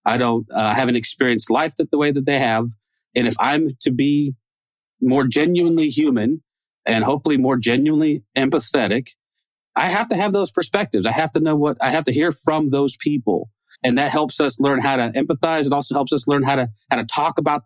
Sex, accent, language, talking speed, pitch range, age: male, American, English, 210 wpm, 115-150 Hz, 30-49